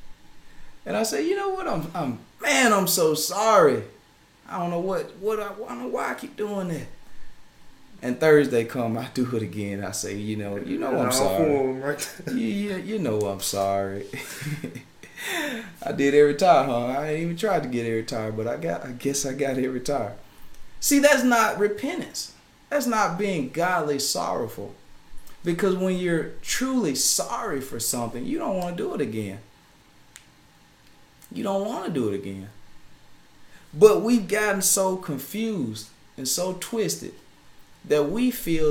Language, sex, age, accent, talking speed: English, male, 30-49, American, 170 wpm